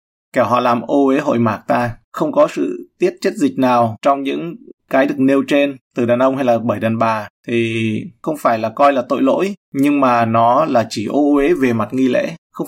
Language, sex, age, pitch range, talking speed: Vietnamese, male, 20-39, 120-160 Hz, 230 wpm